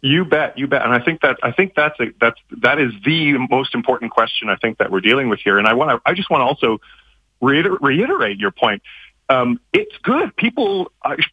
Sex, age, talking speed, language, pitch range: male, 40-59, 230 wpm, English, 120-170 Hz